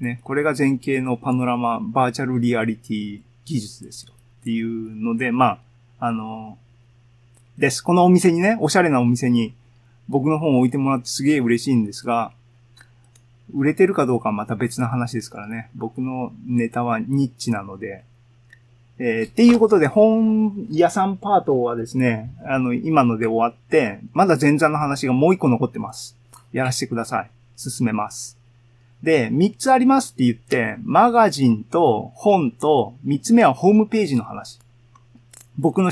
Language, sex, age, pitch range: Japanese, male, 20-39, 120-160 Hz